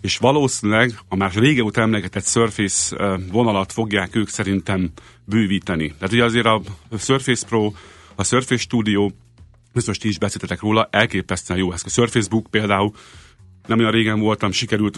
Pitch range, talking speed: 95-115 Hz, 155 wpm